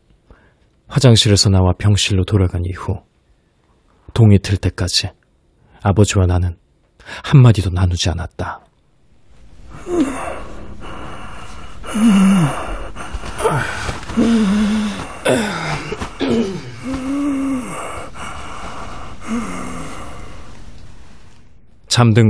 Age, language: 40-59, Korean